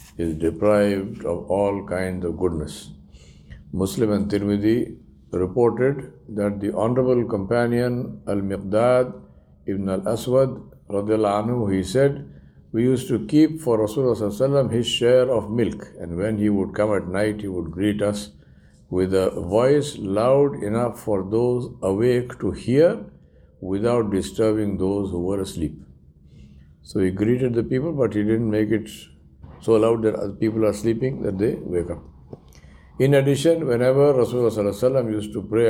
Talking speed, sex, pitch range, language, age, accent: 140 wpm, male, 90-120 Hz, English, 60-79, Indian